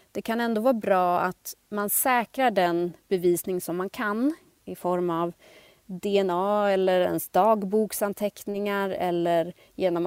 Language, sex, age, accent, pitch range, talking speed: Swedish, female, 30-49, native, 175-205 Hz, 130 wpm